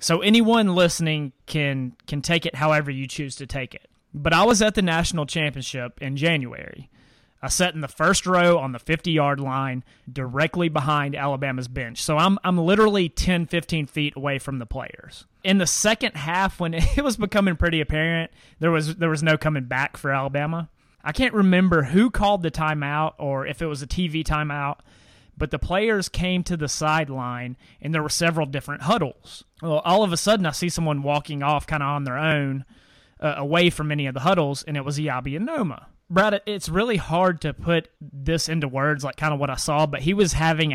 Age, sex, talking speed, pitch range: 30-49, male, 205 wpm, 140-175 Hz